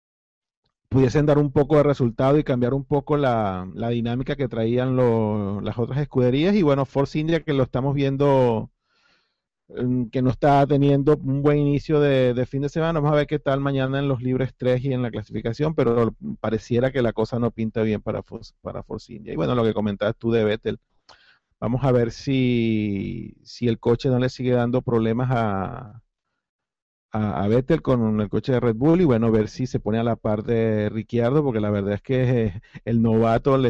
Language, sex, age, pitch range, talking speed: Spanish, male, 40-59, 115-135 Hz, 205 wpm